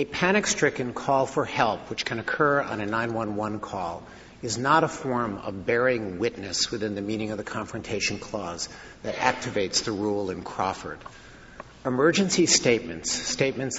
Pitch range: 105-130 Hz